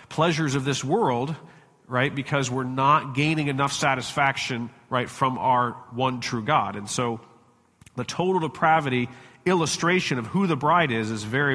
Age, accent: 40-59, American